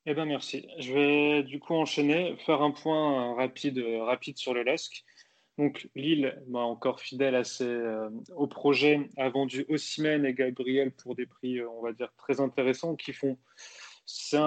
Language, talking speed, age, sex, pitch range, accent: French, 180 wpm, 20-39, male, 125-150 Hz, French